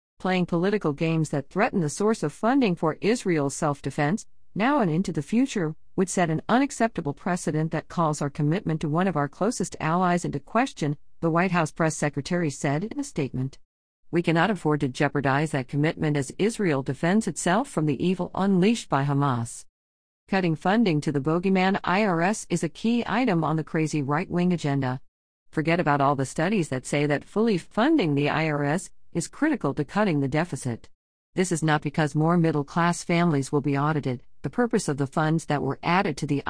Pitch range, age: 145-185 Hz, 50-69